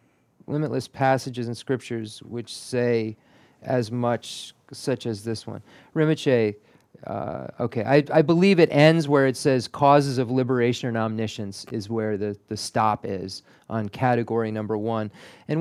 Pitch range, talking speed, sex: 110-135 Hz, 150 wpm, male